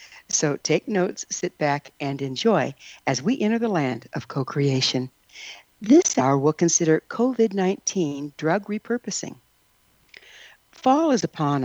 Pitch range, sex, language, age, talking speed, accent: 145-215 Hz, female, English, 60-79, 125 wpm, American